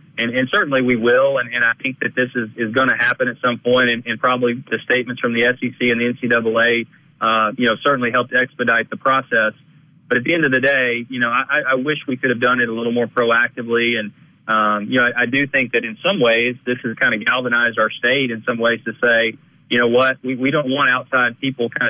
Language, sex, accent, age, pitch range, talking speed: English, male, American, 30-49, 110-130 Hz, 250 wpm